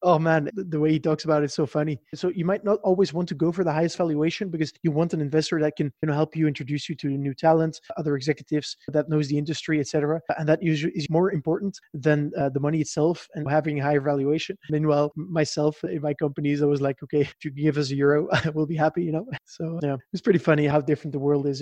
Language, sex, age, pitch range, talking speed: English, male, 20-39, 145-165 Hz, 255 wpm